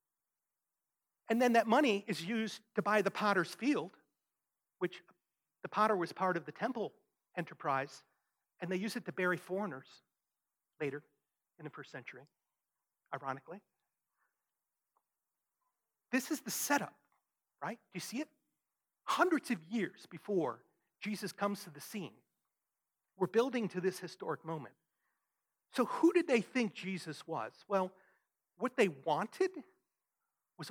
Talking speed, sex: 135 wpm, male